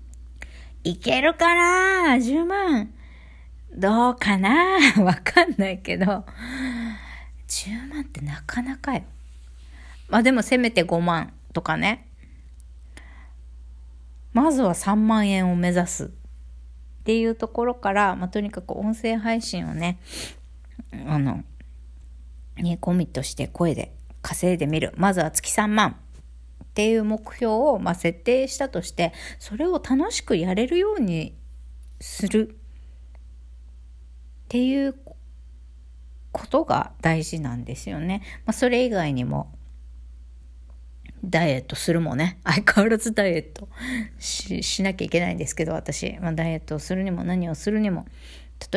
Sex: female